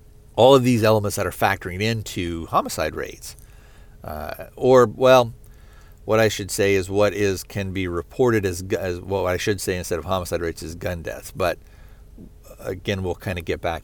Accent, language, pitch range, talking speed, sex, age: American, English, 85-110 Hz, 190 wpm, male, 50-69